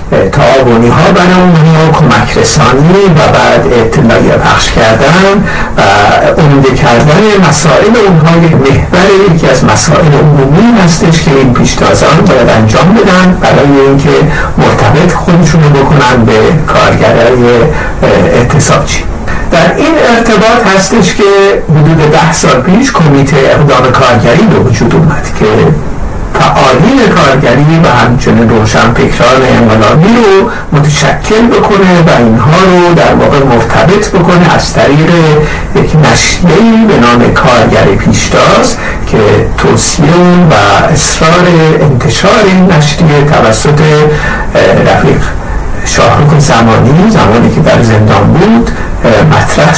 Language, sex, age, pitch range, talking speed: Persian, male, 60-79, 135-185 Hz, 115 wpm